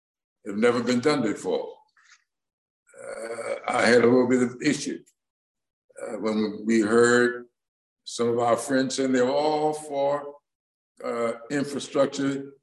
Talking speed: 130 wpm